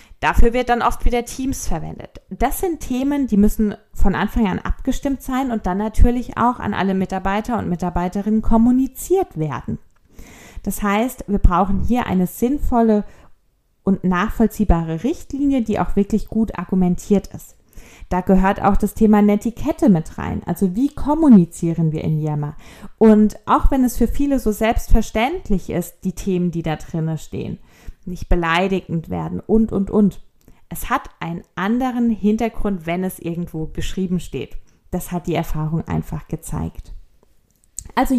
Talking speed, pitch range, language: 150 wpm, 180-230 Hz, German